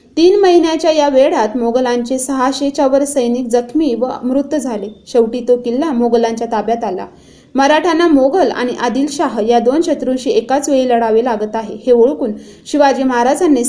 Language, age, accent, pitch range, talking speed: Marathi, 20-39, native, 235-290 Hz, 130 wpm